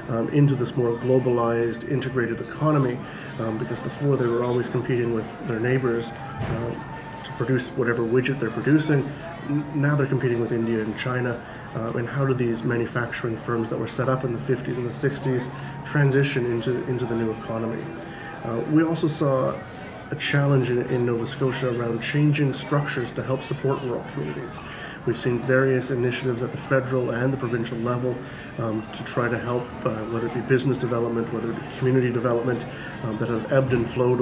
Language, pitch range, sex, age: English, 115-130 Hz, male, 30-49